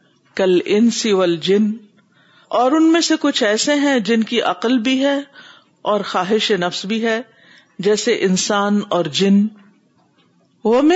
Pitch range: 190-260 Hz